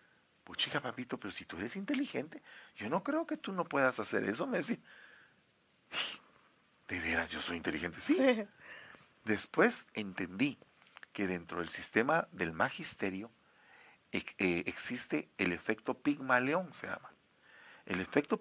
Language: English